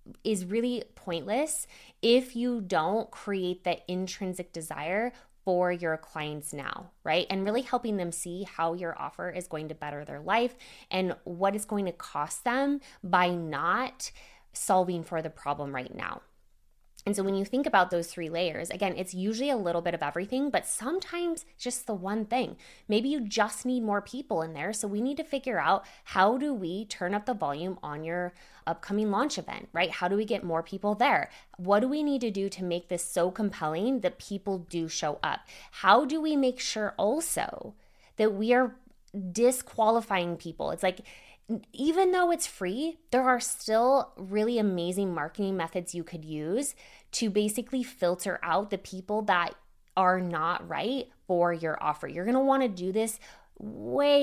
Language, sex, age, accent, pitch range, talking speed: English, female, 20-39, American, 170-235 Hz, 185 wpm